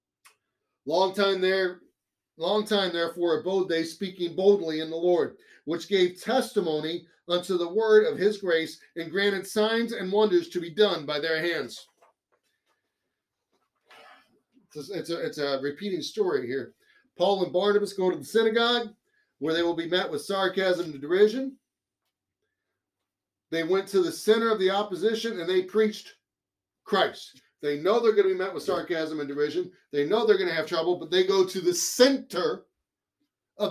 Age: 40-59